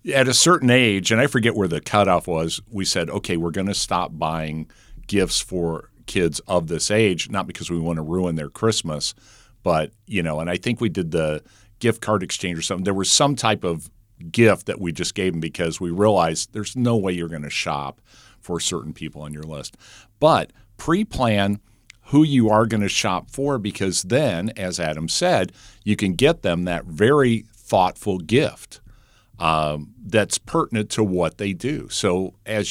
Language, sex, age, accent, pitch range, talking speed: English, male, 50-69, American, 90-115 Hz, 195 wpm